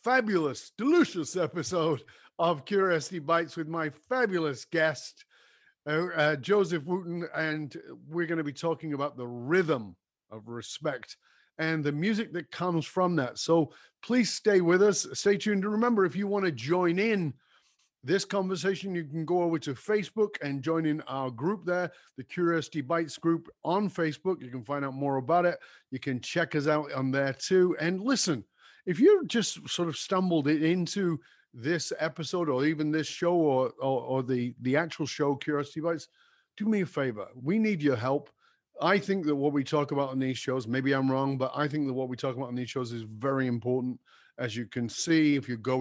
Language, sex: English, male